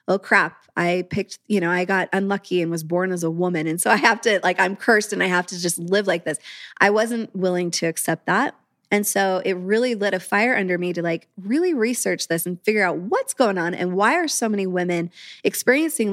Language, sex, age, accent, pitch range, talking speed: English, female, 20-39, American, 175-210 Hz, 240 wpm